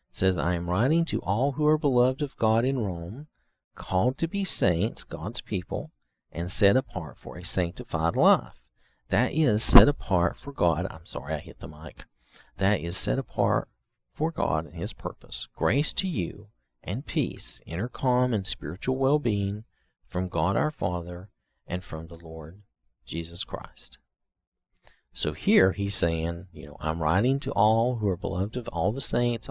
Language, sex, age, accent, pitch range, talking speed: English, male, 50-69, American, 85-120 Hz, 170 wpm